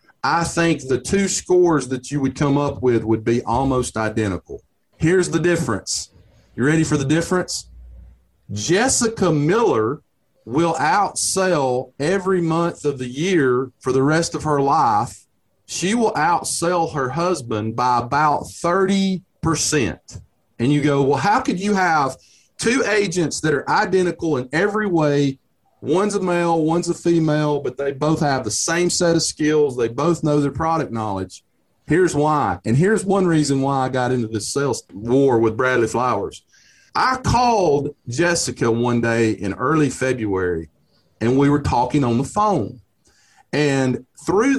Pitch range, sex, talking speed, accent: 125-170 Hz, male, 155 wpm, American